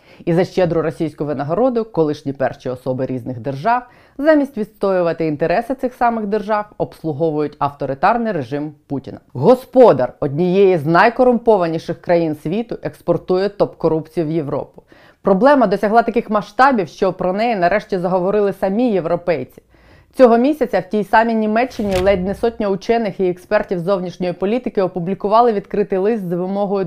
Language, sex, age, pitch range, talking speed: Ukrainian, female, 20-39, 165-215 Hz, 135 wpm